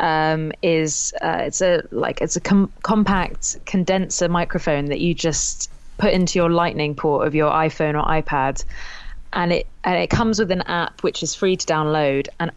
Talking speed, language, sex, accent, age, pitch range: 180 wpm, English, female, British, 20-39, 150-175 Hz